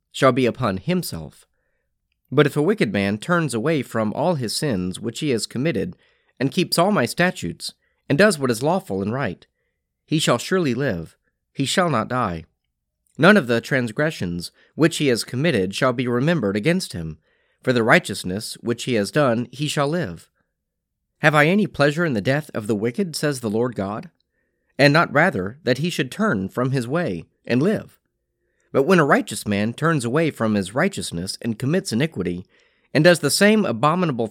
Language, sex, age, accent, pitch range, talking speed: English, male, 30-49, American, 110-165 Hz, 185 wpm